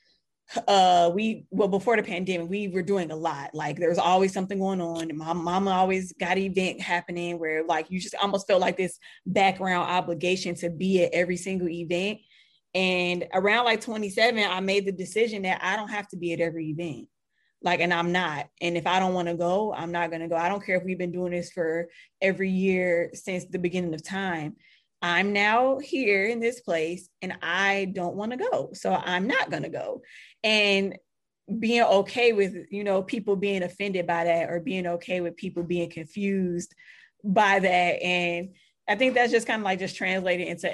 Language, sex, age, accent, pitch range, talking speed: English, female, 20-39, American, 175-195 Hz, 200 wpm